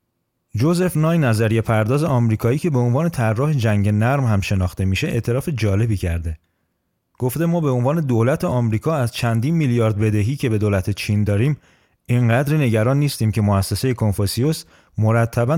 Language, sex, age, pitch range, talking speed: Persian, male, 30-49, 100-130 Hz, 150 wpm